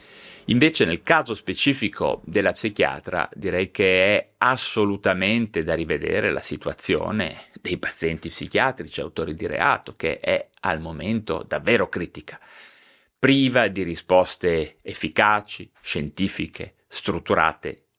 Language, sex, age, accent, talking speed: Italian, male, 40-59, native, 105 wpm